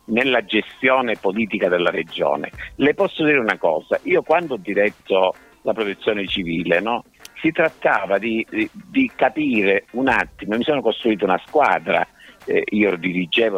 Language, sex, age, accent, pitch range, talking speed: Italian, male, 50-69, native, 95-140 Hz, 145 wpm